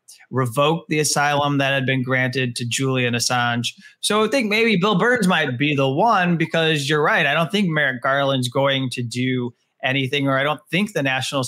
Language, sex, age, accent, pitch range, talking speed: English, male, 20-39, American, 130-175 Hz, 200 wpm